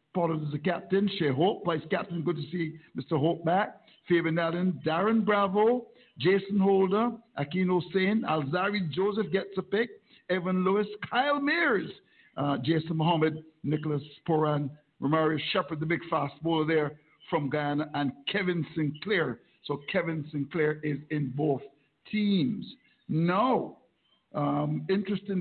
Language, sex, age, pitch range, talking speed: English, male, 60-79, 155-200 Hz, 135 wpm